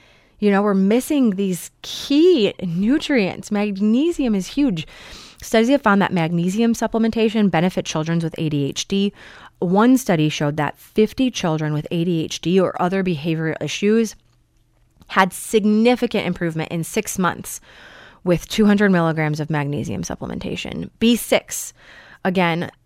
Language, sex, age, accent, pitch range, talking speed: English, female, 30-49, American, 160-220 Hz, 120 wpm